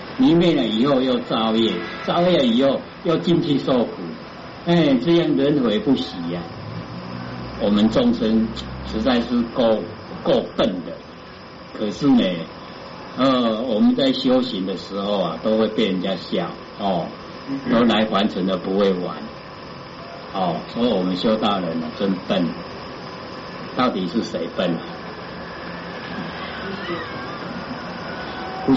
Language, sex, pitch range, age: Chinese, male, 90-145 Hz, 60-79